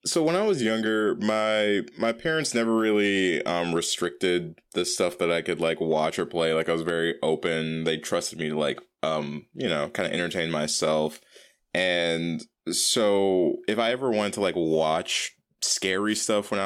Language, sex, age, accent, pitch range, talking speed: English, male, 20-39, American, 80-100 Hz, 180 wpm